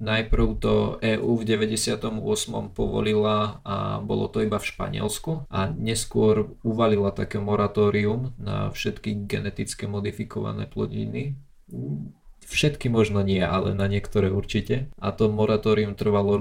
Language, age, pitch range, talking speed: Slovak, 20-39, 100-115 Hz, 120 wpm